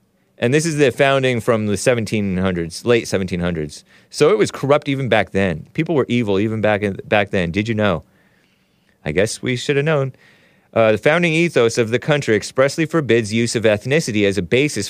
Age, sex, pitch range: 30-49, male, 100-135 Hz